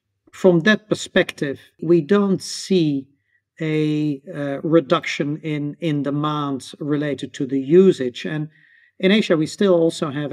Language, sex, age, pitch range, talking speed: English, male, 40-59, 135-165 Hz, 135 wpm